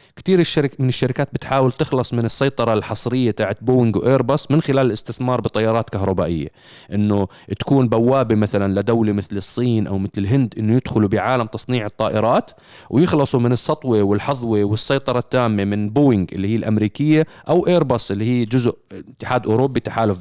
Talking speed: 150 wpm